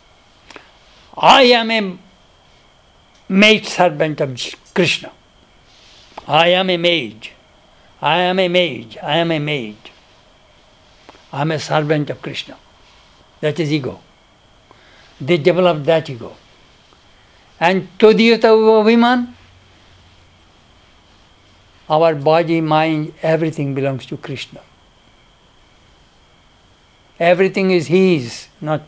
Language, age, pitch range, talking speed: English, 60-79, 150-205 Hz, 95 wpm